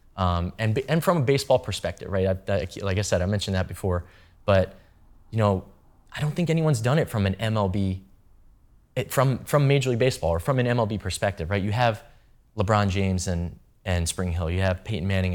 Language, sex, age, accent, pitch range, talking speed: English, male, 20-39, American, 90-105 Hz, 195 wpm